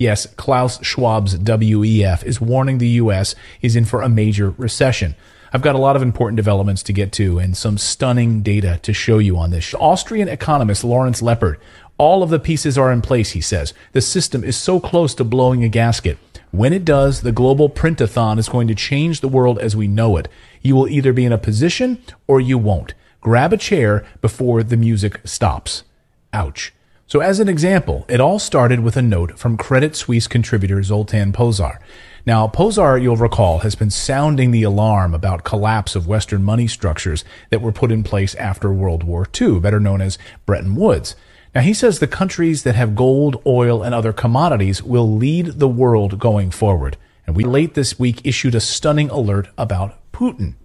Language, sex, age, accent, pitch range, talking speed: English, male, 30-49, American, 100-130 Hz, 195 wpm